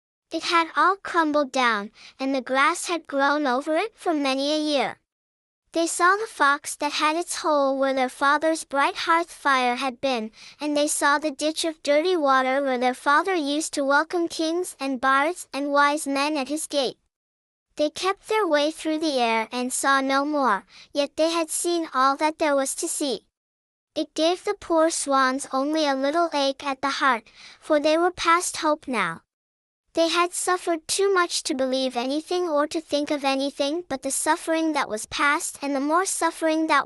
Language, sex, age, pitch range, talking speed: English, male, 10-29, 275-330 Hz, 190 wpm